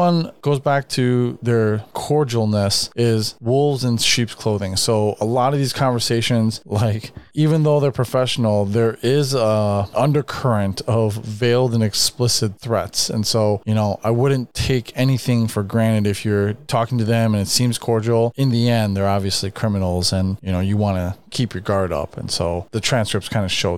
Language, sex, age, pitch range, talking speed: English, male, 30-49, 105-130 Hz, 180 wpm